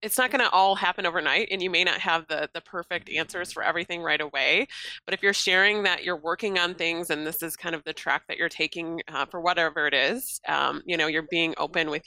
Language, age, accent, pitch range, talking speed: English, 30-49, American, 165-200 Hz, 255 wpm